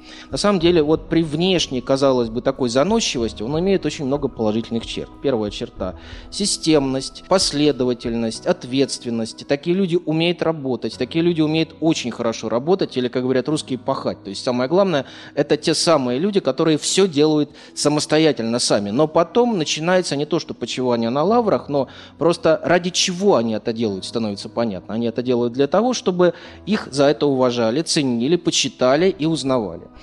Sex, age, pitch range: male, 20-39, 120-165 Hz